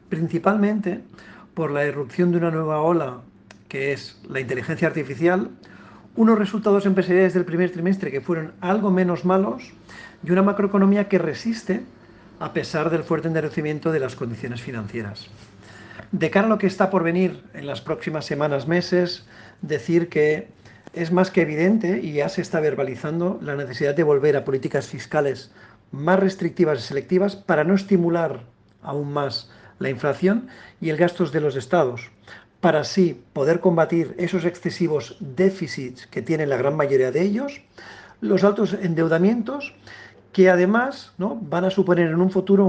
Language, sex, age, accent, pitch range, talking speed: Spanish, male, 40-59, Spanish, 145-190 Hz, 155 wpm